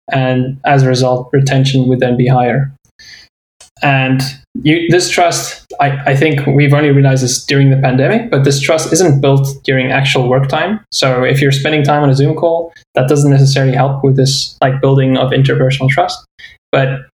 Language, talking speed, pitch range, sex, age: English, 185 wpm, 130-145 Hz, male, 10-29